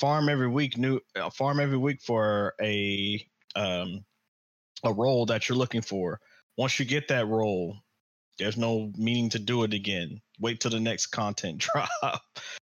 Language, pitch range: English, 105-120 Hz